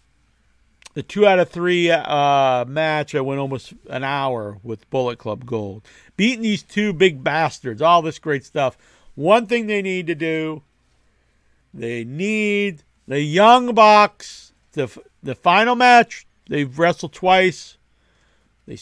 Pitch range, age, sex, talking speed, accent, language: 140-180 Hz, 50-69, male, 145 wpm, American, English